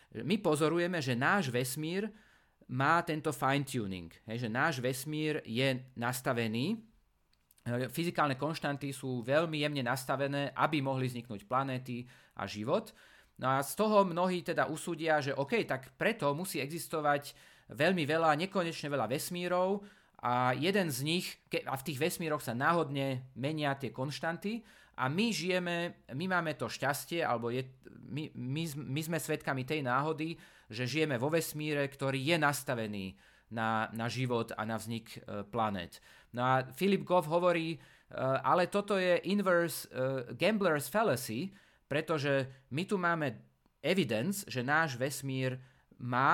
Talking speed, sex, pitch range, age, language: 135 wpm, male, 130-165 Hz, 30-49, Slovak